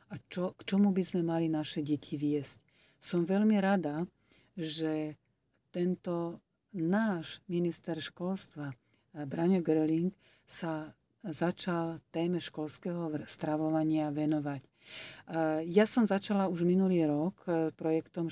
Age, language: 40-59, Slovak